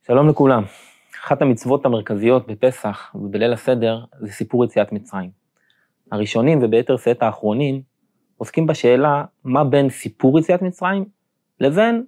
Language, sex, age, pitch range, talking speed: Hebrew, male, 20-39, 110-150 Hz, 120 wpm